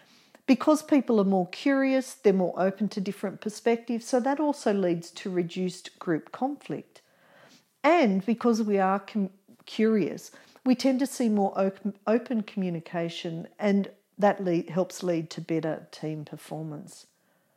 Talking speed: 135 wpm